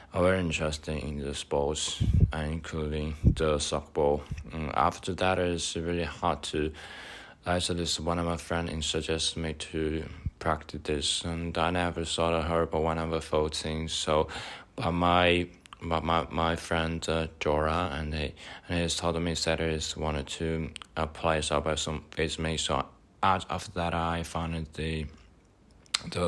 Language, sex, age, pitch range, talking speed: English, male, 20-39, 75-85 Hz, 165 wpm